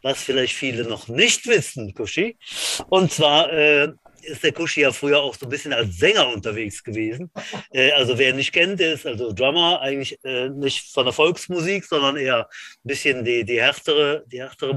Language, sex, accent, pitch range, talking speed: German, male, German, 130-185 Hz, 195 wpm